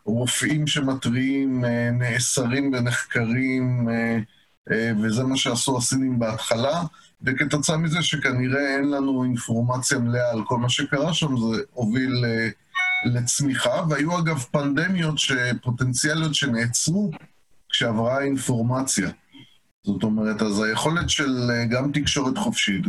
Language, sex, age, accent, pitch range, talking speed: Hebrew, male, 30-49, native, 115-140 Hz, 100 wpm